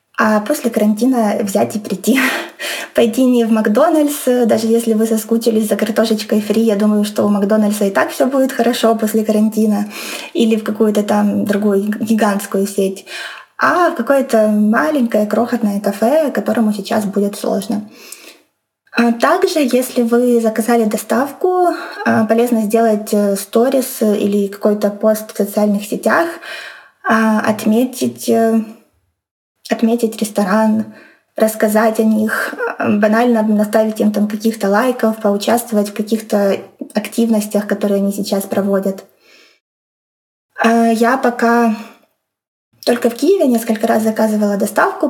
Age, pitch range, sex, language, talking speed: 20-39, 210-235 Hz, female, Russian, 120 wpm